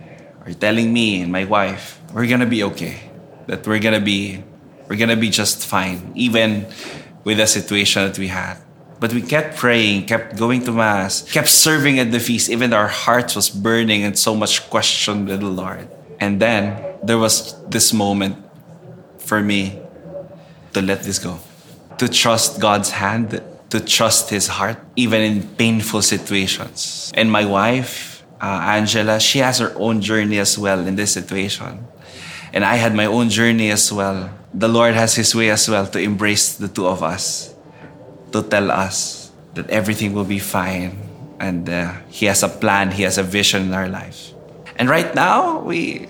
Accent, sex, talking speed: Filipino, male, 180 wpm